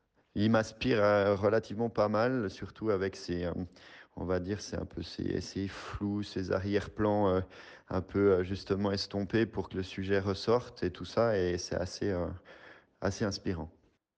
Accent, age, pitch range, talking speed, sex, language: French, 30-49, 95-110 Hz, 150 wpm, male, French